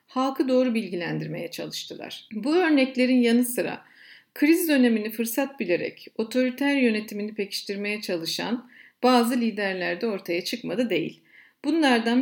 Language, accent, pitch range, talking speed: Turkish, native, 205-265 Hz, 115 wpm